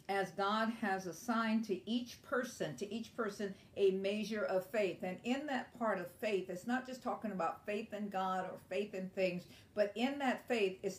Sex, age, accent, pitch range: female, 50-69, American, 190-240 Hz